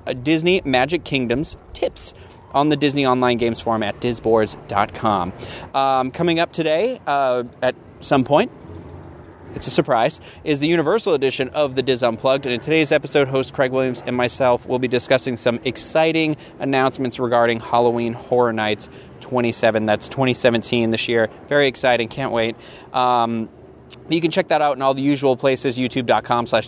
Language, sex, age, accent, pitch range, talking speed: English, male, 30-49, American, 120-145 Hz, 160 wpm